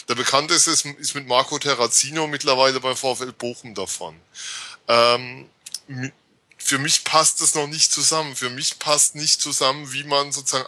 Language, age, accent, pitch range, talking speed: German, 20-39, German, 125-145 Hz, 155 wpm